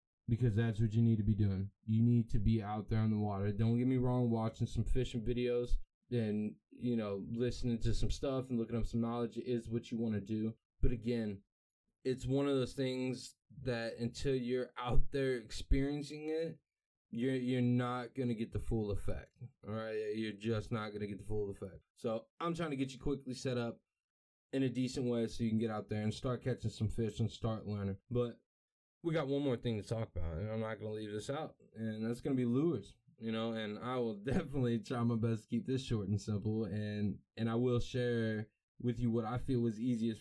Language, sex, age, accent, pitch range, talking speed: English, male, 20-39, American, 110-125 Hz, 225 wpm